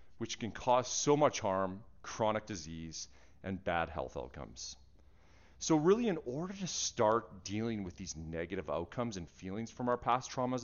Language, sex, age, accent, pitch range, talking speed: English, male, 30-49, American, 95-140 Hz, 165 wpm